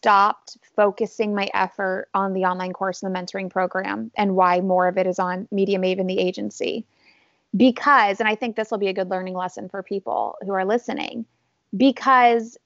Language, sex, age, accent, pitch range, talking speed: English, female, 30-49, American, 190-245 Hz, 190 wpm